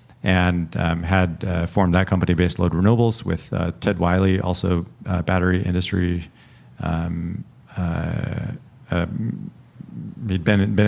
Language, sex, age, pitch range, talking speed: English, male, 40-59, 90-110 Hz, 130 wpm